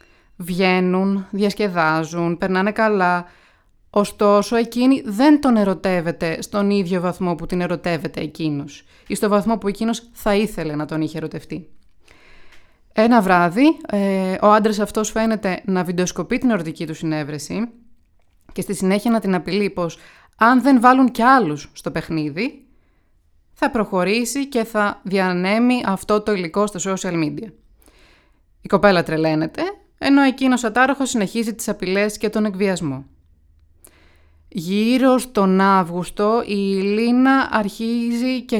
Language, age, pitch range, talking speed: Greek, 20-39, 175-230 Hz, 130 wpm